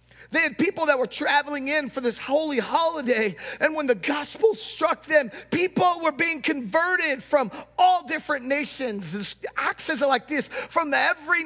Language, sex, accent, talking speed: English, male, American, 160 wpm